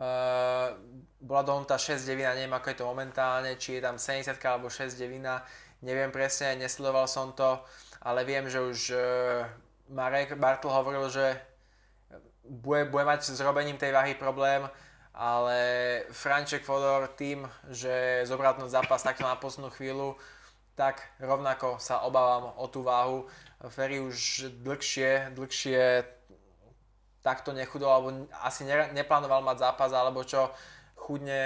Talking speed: 135 wpm